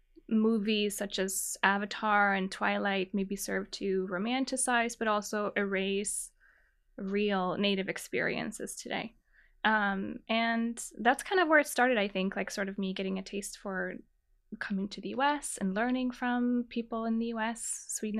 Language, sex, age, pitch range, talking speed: English, female, 10-29, 205-235 Hz, 155 wpm